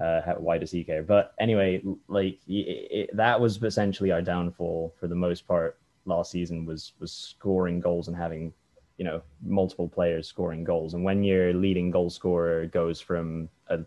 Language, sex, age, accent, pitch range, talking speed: English, male, 10-29, British, 85-100 Hz, 175 wpm